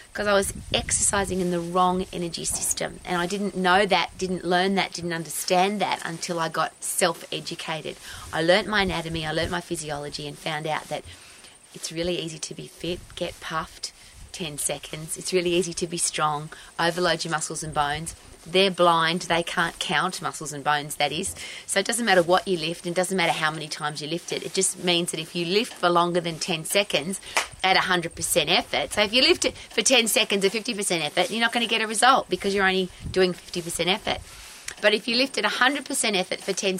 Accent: Australian